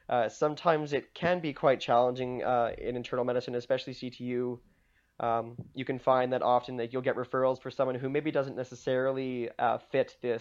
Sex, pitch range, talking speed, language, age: male, 115-130 Hz, 185 wpm, English, 20-39